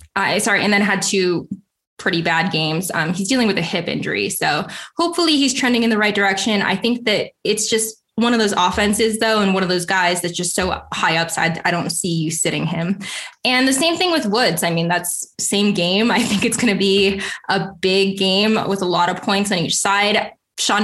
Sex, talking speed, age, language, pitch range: female, 230 wpm, 10-29, English, 185-230 Hz